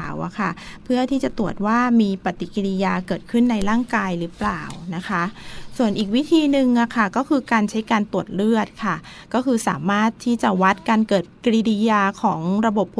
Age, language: 20-39, Thai